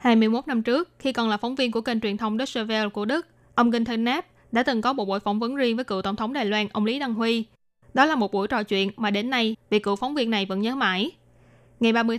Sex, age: female, 10-29